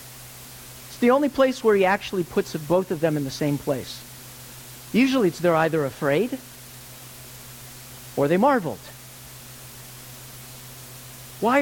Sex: male